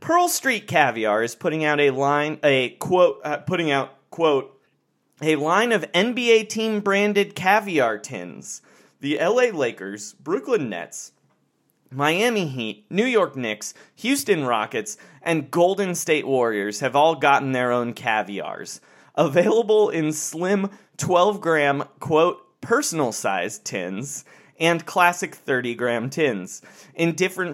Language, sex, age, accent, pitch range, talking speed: English, male, 30-49, American, 140-200 Hz, 130 wpm